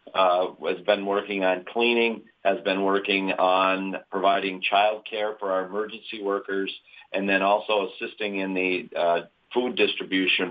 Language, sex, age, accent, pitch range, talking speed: English, male, 50-69, American, 95-110 Hz, 150 wpm